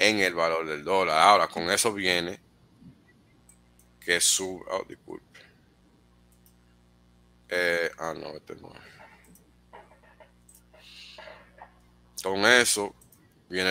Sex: male